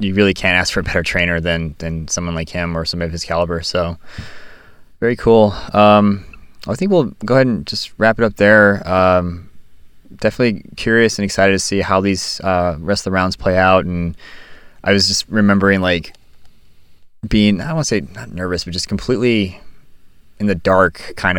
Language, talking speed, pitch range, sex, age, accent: English, 195 wpm, 85-100 Hz, male, 20-39, American